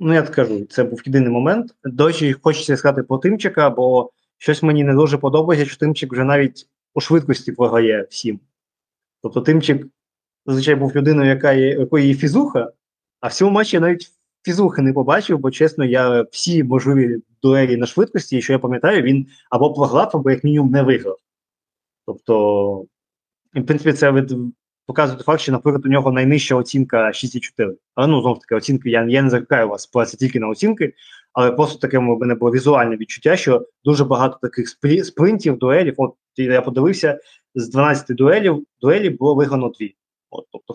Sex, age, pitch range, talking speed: male, 20-39, 125-150 Hz, 175 wpm